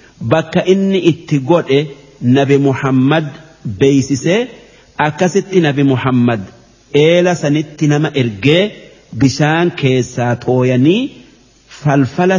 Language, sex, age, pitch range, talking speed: Arabic, male, 50-69, 135-175 Hz, 85 wpm